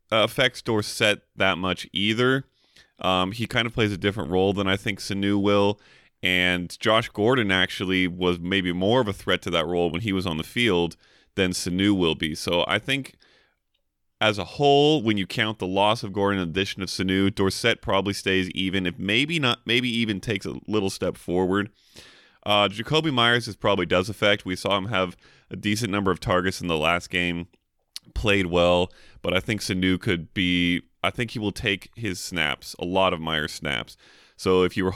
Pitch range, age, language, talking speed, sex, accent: 90-110 Hz, 30-49, English, 200 wpm, male, American